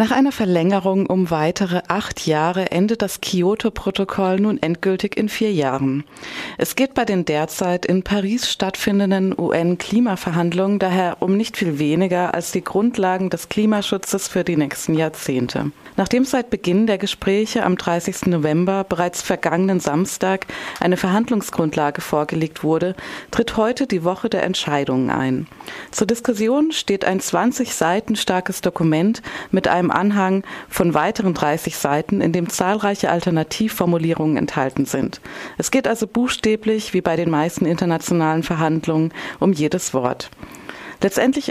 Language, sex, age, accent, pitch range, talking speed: German, female, 30-49, German, 165-205 Hz, 135 wpm